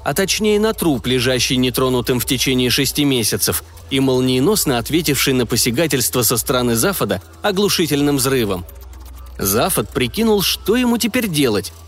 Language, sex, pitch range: Russian, male, 120-160 Hz